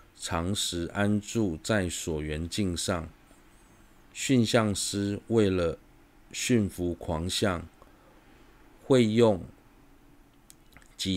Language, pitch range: Chinese, 90-110 Hz